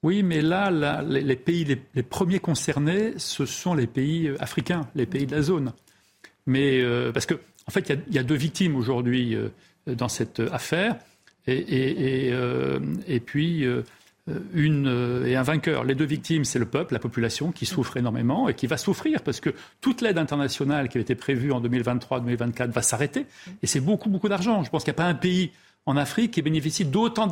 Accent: French